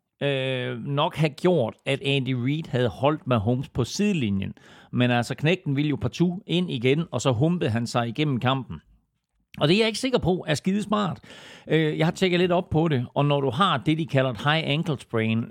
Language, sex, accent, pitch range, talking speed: Danish, male, native, 125-165 Hz, 215 wpm